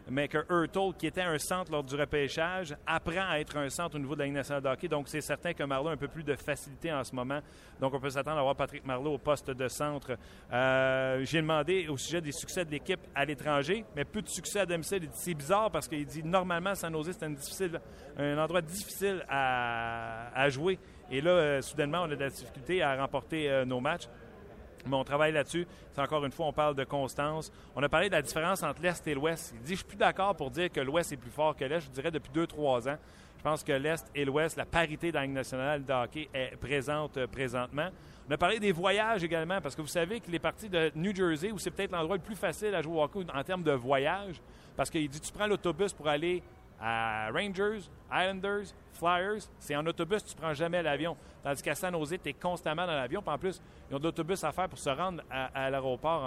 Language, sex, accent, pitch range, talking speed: French, male, Canadian, 135-175 Hz, 245 wpm